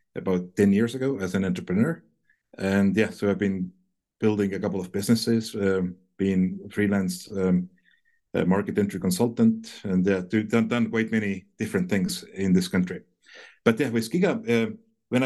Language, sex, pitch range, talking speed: English, male, 100-120 Hz, 160 wpm